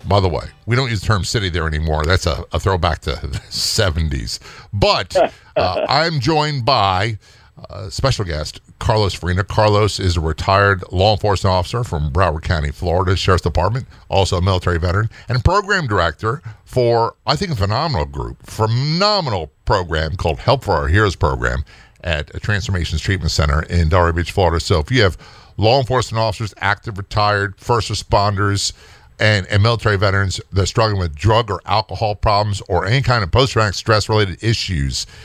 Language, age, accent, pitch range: English, 50-69, American, 90-115 Hz